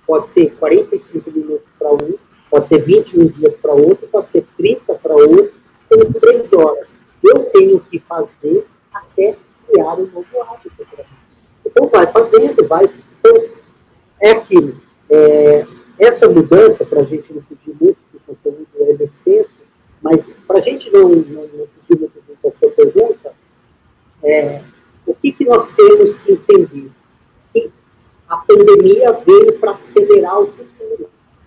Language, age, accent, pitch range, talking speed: Portuguese, 40-59, Brazilian, 285-440 Hz, 145 wpm